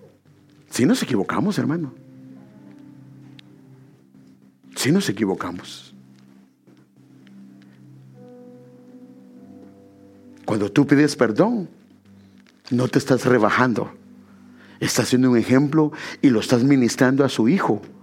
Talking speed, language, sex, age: 85 wpm, English, male, 60-79